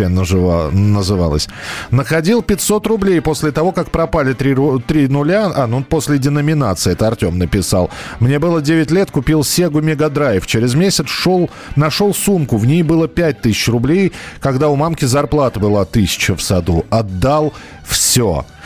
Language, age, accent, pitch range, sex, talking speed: Russian, 40-59, native, 120-160 Hz, male, 140 wpm